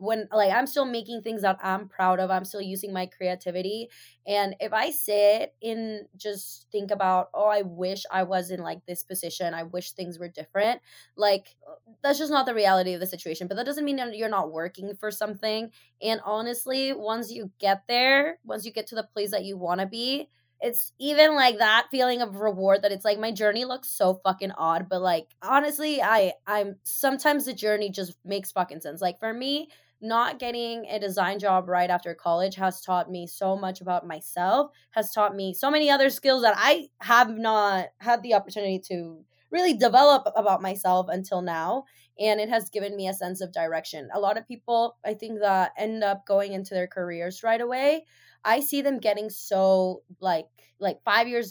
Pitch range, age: 185-235 Hz, 20-39